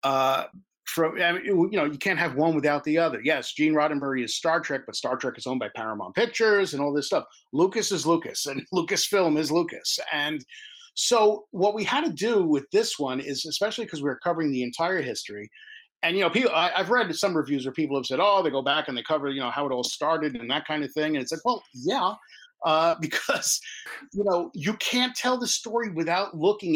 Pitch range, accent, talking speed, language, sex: 145-195 Hz, American, 235 wpm, English, male